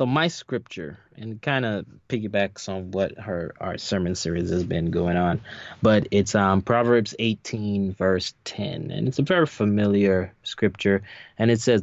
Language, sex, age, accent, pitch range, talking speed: English, male, 20-39, American, 100-120 Hz, 165 wpm